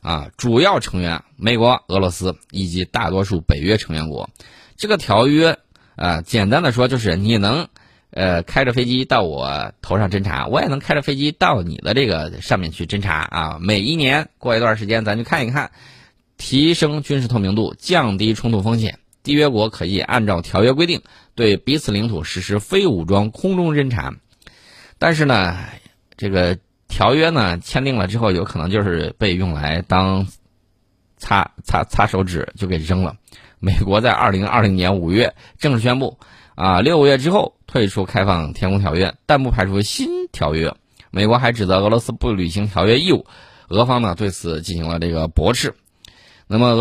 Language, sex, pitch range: Chinese, male, 95-125 Hz